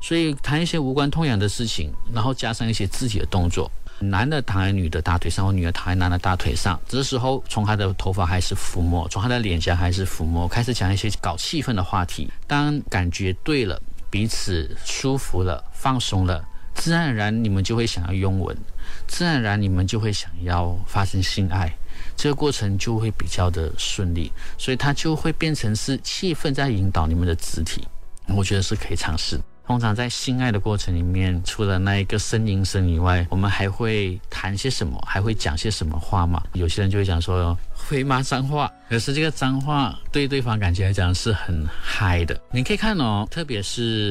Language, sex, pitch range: Chinese, male, 90-125 Hz